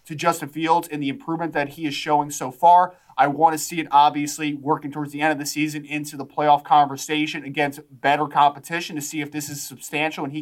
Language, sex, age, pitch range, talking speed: English, male, 20-39, 140-160 Hz, 230 wpm